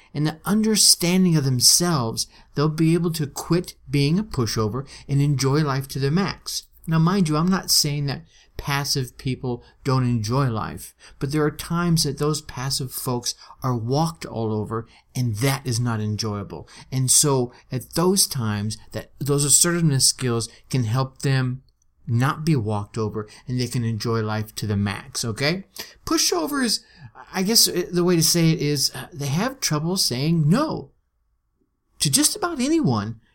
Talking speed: 165 wpm